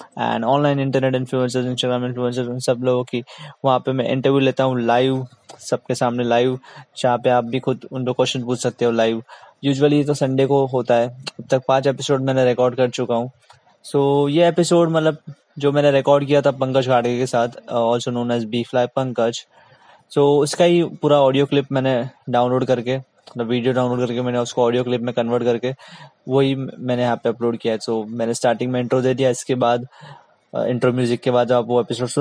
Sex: male